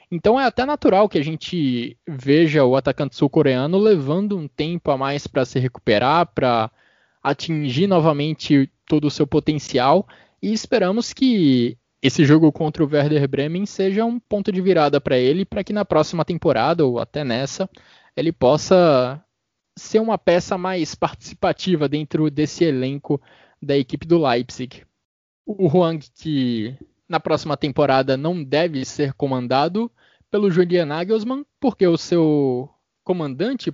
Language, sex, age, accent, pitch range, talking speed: Portuguese, male, 20-39, Brazilian, 140-180 Hz, 145 wpm